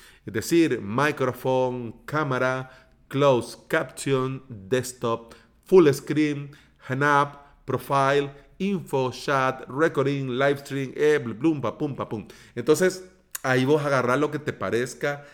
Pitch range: 120-150 Hz